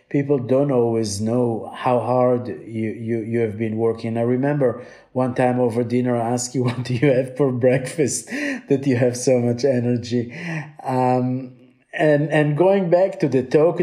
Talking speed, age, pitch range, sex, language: 180 wpm, 50-69, 120-145 Hz, male, English